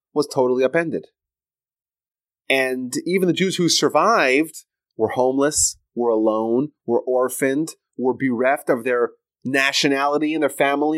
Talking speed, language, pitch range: 125 wpm, English, 120-170 Hz